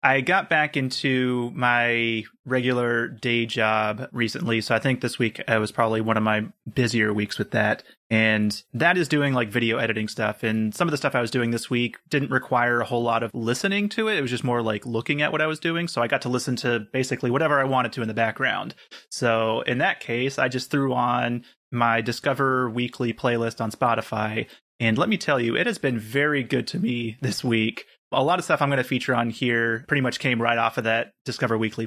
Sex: male